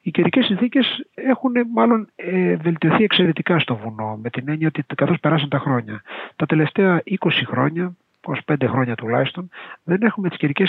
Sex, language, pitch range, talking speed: male, Greek, 130-180 Hz, 165 wpm